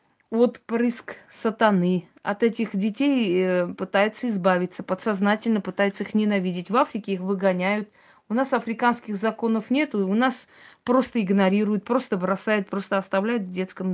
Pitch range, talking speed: 190-230 Hz, 140 wpm